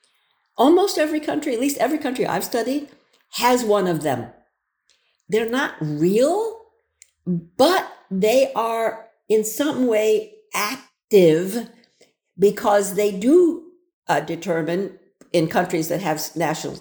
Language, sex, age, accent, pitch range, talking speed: English, female, 60-79, American, 170-250 Hz, 120 wpm